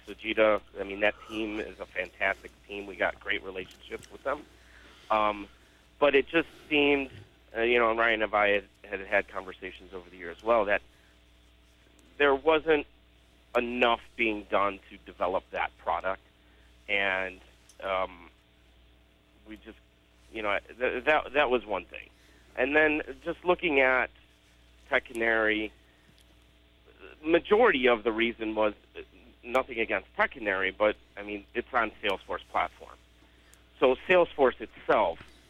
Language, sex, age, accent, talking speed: English, male, 40-59, American, 140 wpm